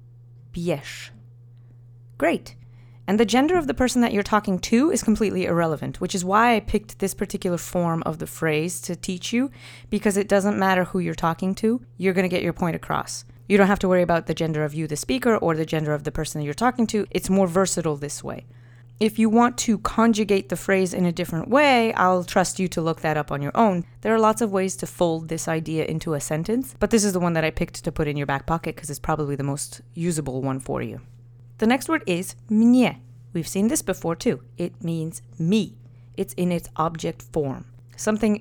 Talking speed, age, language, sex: 225 wpm, 30-49, English, female